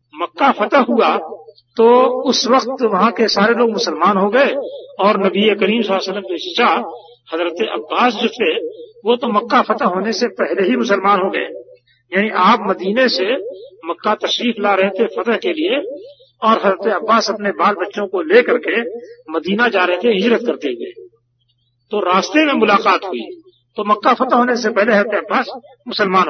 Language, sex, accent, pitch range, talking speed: Hindi, male, native, 185-260 Hz, 170 wpm